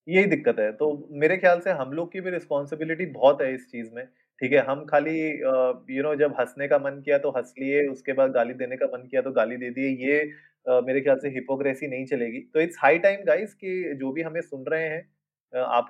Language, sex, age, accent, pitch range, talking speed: Hindi, male, 30-49, native, 130-155 Hz, 235 wpm